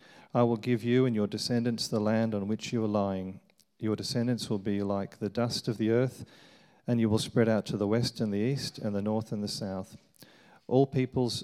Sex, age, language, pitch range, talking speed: male, 40-59, English, 100-120 Hz, 225 wpm